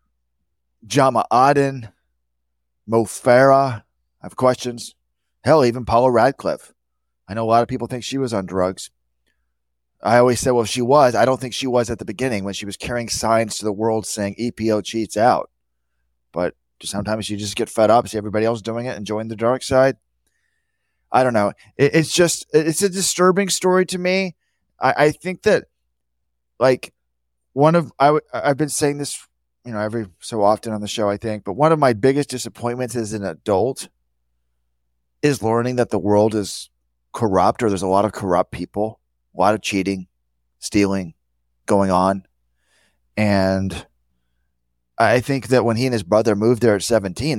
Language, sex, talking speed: English, male, 185 wpm